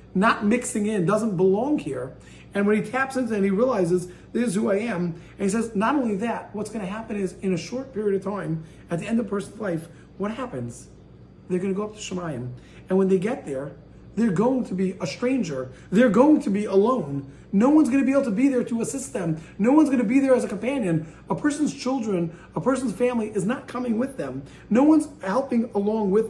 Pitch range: 185-245 Hz